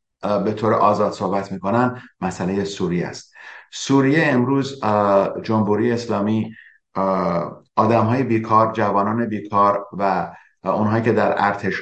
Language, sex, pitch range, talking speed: Persian, male, 100-125 Hz, 110 wpm